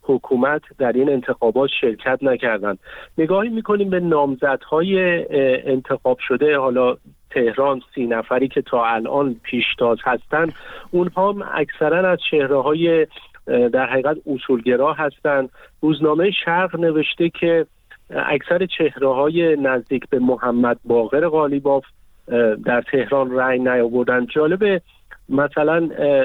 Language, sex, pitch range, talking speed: Persian, male, 120-155 Hz, 110 wpm